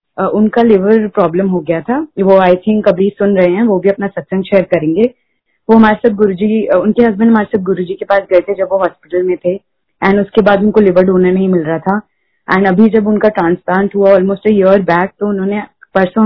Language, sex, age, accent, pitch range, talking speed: Hindi, female, 20-39, native, 190-225 Hz, 220 wpm